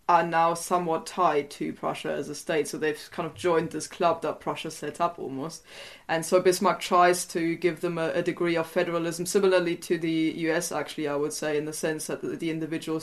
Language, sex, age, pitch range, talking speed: English, female, 20-39, 150-170 Hz, 215 wpm